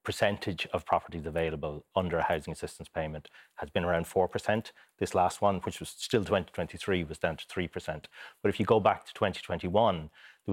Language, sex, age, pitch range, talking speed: English, male, 30-49, 90-105 Hz, 180 wpm